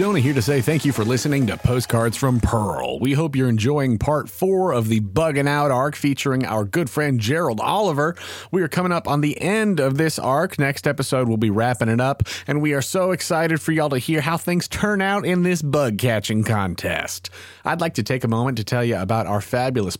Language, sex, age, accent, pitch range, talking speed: English, male, 30-49, American, 125-175 Hz, 230 wpm